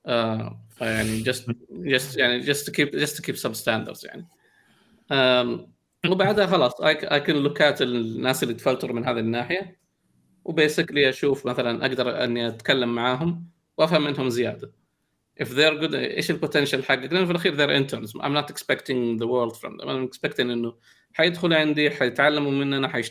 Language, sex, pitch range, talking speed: Arabic, male, 120-145 Hz, 150 wpm